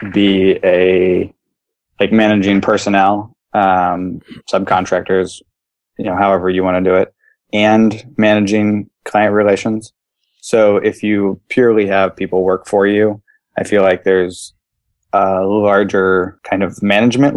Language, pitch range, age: English, 95-110 Hz, 20-39